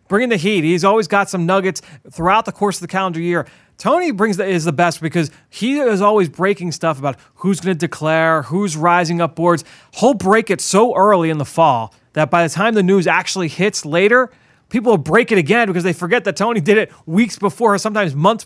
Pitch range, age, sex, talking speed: 150-195 Hz, 30-49, male, 225 wpm